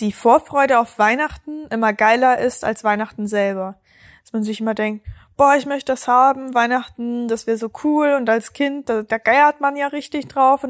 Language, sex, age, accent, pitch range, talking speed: German, female, 20-39, German, 205-255 Hz, 200 wpm